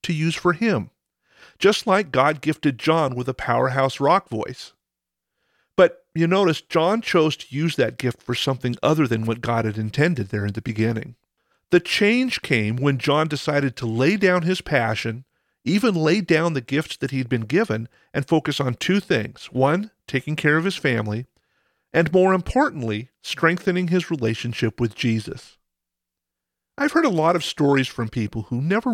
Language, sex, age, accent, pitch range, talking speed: English, male, 50-69, American, 120-170 Hz, 175 wpm